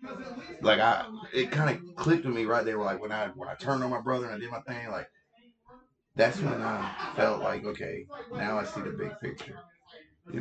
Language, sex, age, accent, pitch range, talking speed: English, male, 30-49, American, 100-165 Hz, 215 wpm